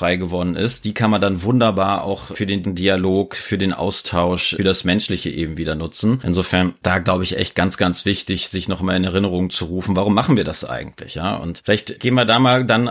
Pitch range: 95-110 Hz